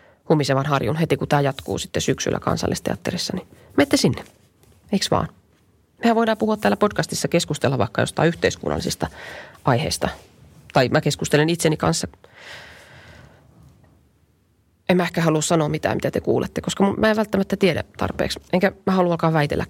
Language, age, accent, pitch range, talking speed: Finnish, 30-49, native, 135-180 Hz, 150 wpm